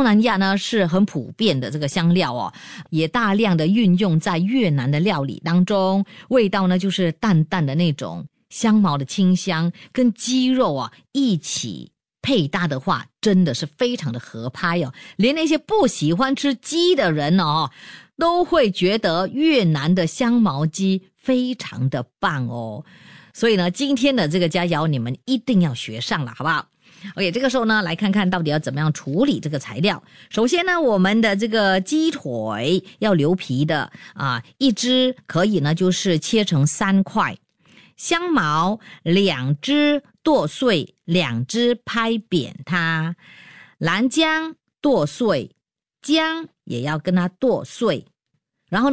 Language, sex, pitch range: Chinese, female, 170-245 Hz